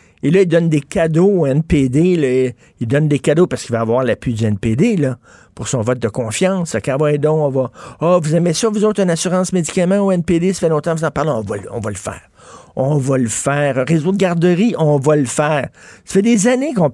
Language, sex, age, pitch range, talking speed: French, male, 60-79, 125-165 Hz, 250 wpm